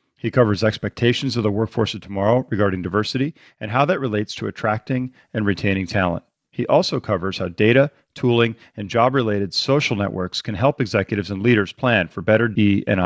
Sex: male